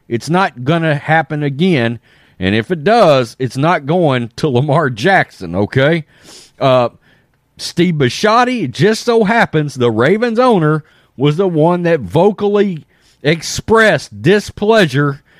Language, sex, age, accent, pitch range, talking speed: English, male, 40-59, American, 130-200 Hz, 135 wpm